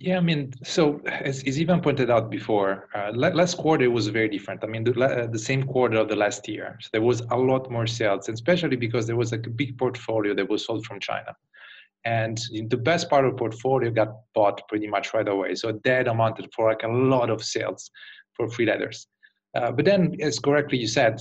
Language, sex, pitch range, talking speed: English, male, 110-135 Hz, 220 wpm